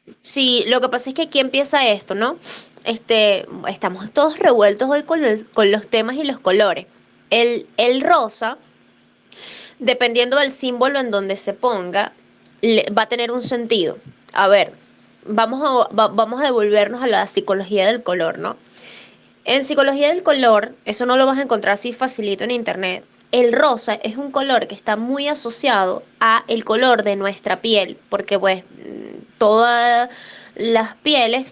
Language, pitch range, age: Spanish, 210-255 Hz, 10-29